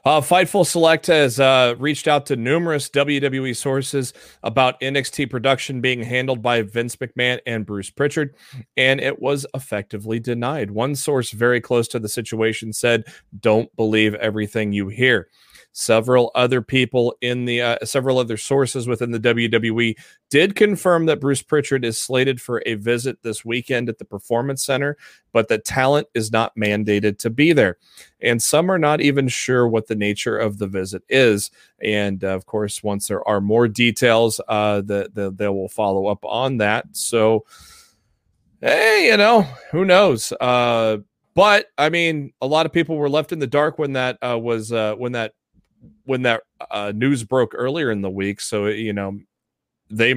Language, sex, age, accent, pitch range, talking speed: English, male, 30-49, American, 110-130 Hz, 175 wpm